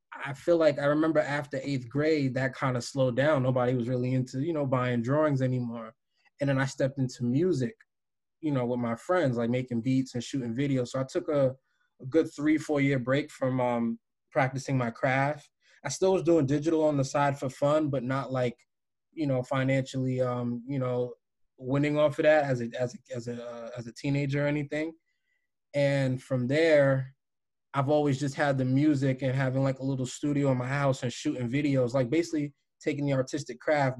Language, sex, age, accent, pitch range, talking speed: English, male, 20-39, American, 125-145 Hz, 205 wpm